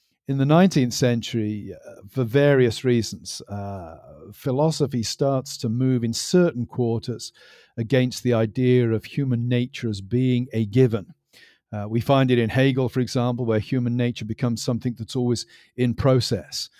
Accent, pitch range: British, 110-125 Hz